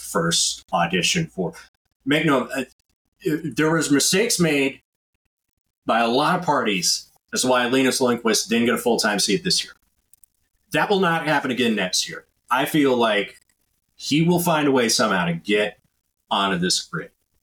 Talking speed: 160 wpm